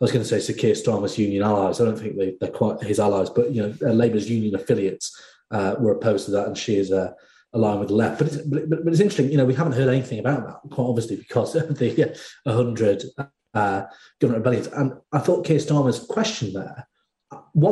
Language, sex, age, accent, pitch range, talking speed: English, male, 30-49, British, 105-145 Hz, 230 wpm